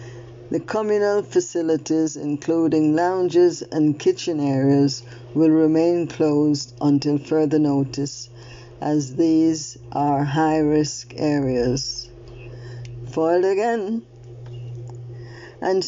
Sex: female